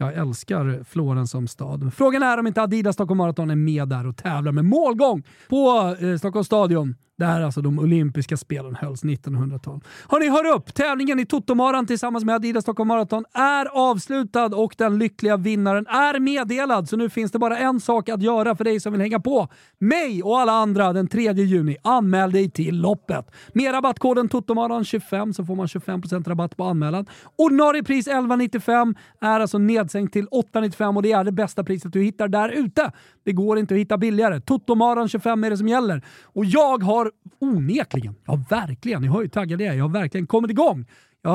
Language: Swedish